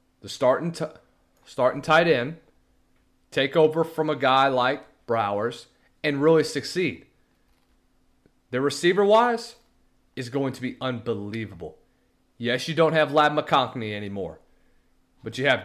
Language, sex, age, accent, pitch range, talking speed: English, male, 30-49, American, 130-155 Hz, 125 wpm